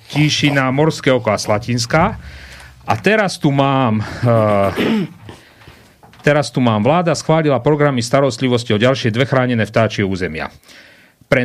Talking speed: 110 wpm